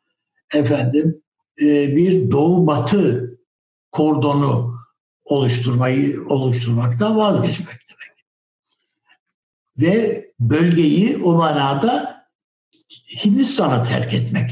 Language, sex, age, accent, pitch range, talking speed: Turkish, male, 60-79, native, 125-190 Hz, 65 wpm